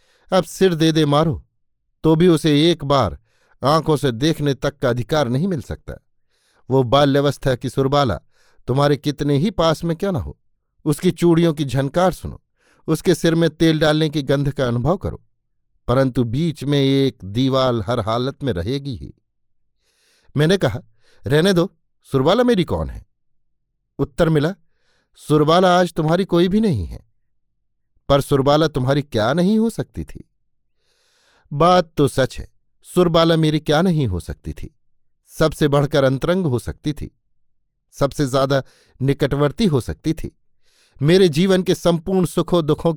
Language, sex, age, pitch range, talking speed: Hindi, male, 60-79, 130-165 Hz, 155 wpm